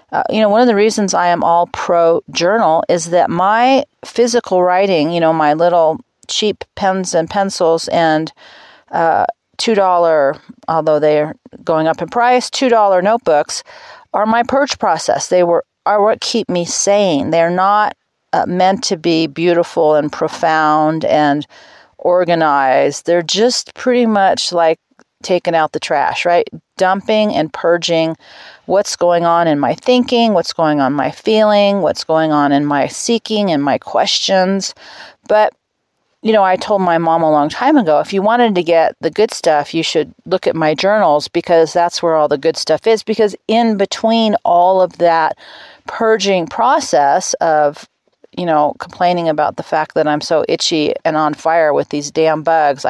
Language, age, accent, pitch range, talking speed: English, 40-59, American, 160-210 Hz, 170 wpm